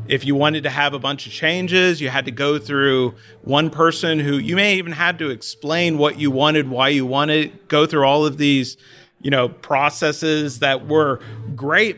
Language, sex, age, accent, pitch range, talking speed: English, male, 40-59, American, 135-165 Hz, 205 wpm